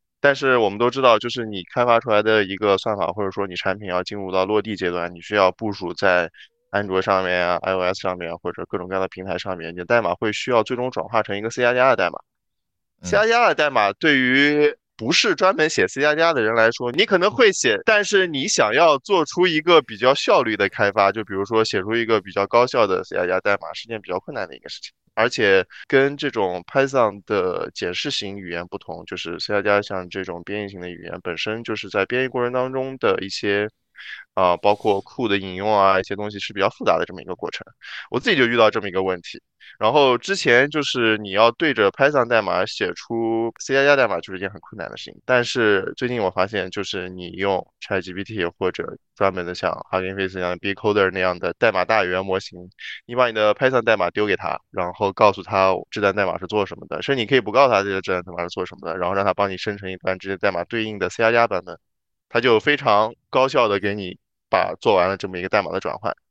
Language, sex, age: Chinese, male, 20-39